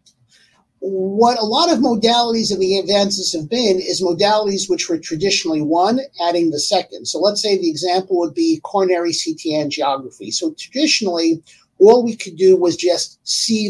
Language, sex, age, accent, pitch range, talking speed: English, male, 50-69, American, 185-250 Hz, 165 wpm